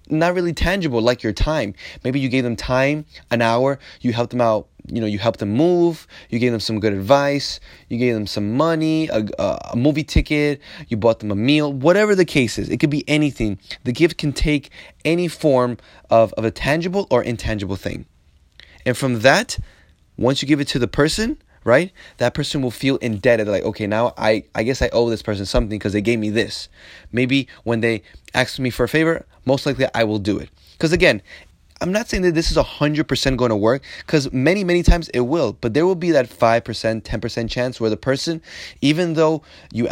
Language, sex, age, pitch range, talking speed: English, male, 20-39, 110-150 Hz, 215 wpm